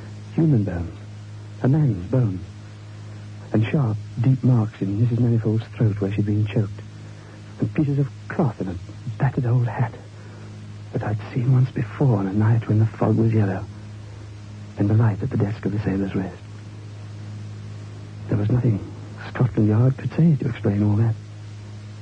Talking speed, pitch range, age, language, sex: 165 wpm, 105-110 Hz, 60-79, English, male